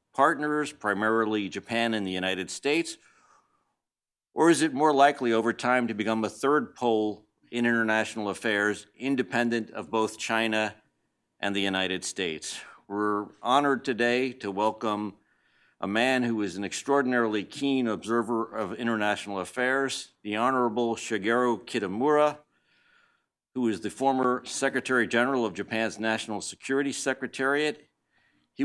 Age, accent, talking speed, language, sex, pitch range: 50-69, American, 130 wpm, English, male, 105-130 Hz